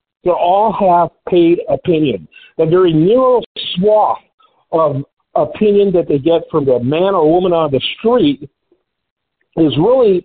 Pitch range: 165-250 Hz